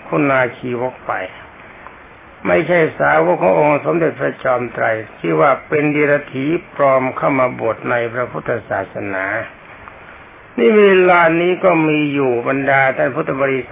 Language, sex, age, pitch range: Thai, male, 60-79, 125-150 Hz